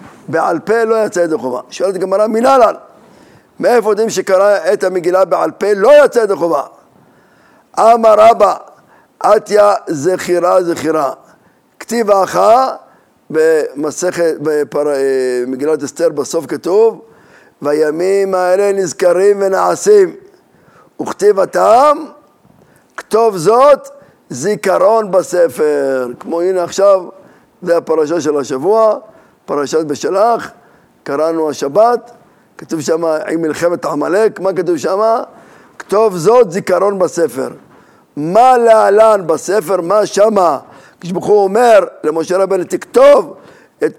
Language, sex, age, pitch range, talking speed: Hebrew, male, 50-69, 165-220 Hz, 105 wpm